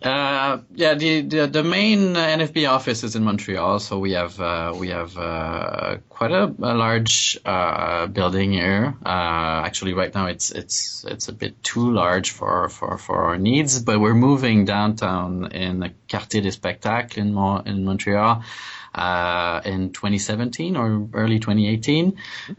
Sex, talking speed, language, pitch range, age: male, 160 wpm, English, 95-115 Hz, 20-39